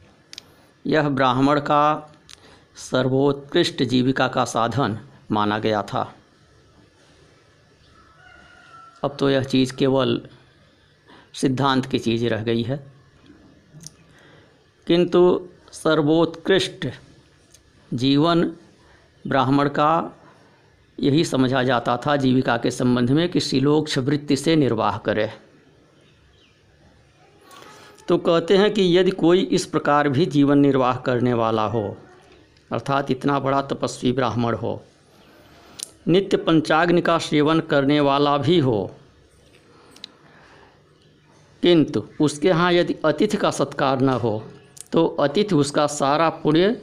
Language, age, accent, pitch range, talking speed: Hindi, 50-69, native, 130-160 Hz, 105 wpm